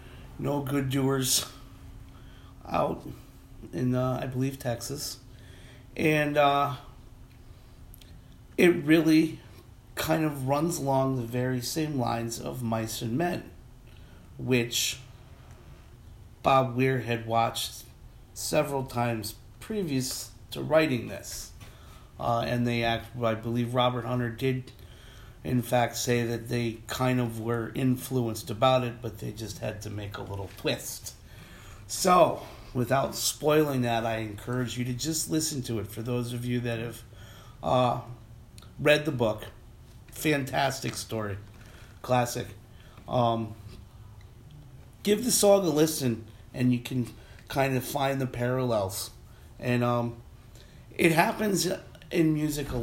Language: English